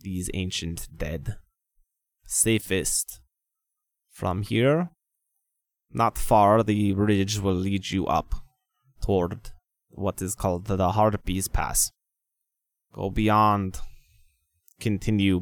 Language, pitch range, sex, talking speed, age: English, 90-115 Hz, male, 95 wpm, 20-39